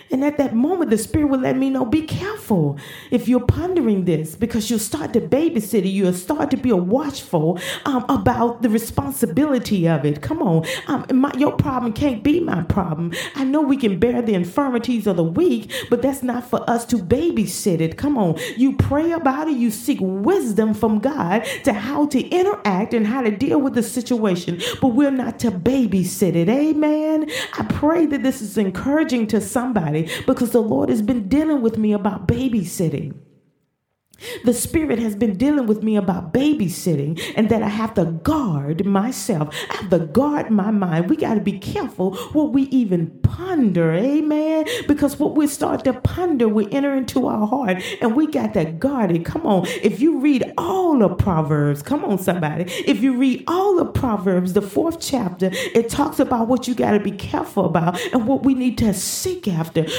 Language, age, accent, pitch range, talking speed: English, 40-59, American, 190-280 Hz, 195 wpm